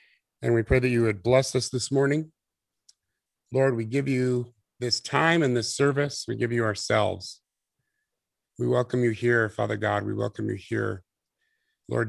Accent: American